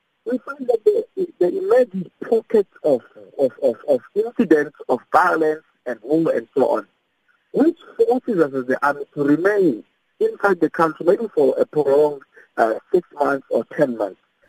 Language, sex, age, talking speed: English, male, 50-69, 165 wpm